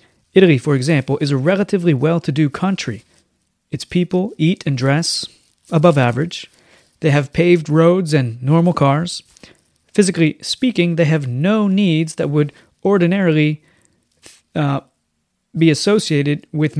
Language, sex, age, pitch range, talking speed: English, male, 30-49, 140-175 Hz, 125 wpm